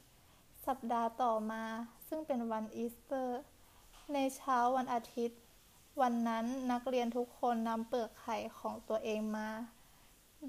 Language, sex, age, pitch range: Thai, female, 20-39, 225-265 Hz